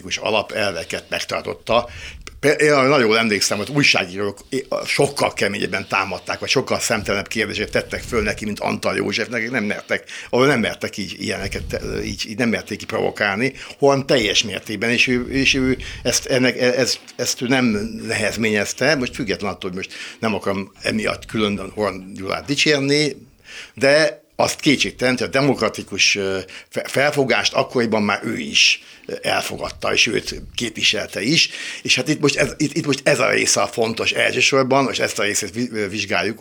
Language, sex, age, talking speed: Hungarian, male, 60-79, 150 wpm